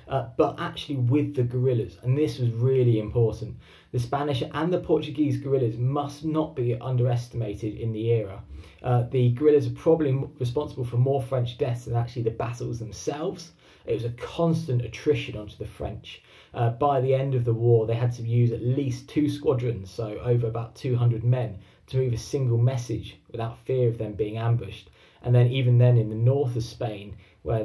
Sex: male